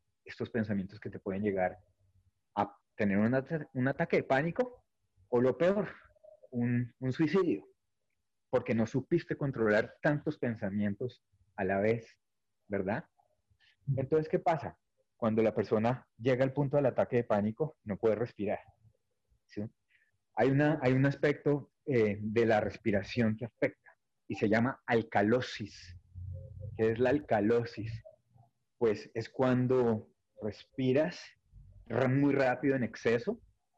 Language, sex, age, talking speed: Spanish, male, 30-49, 130 wpm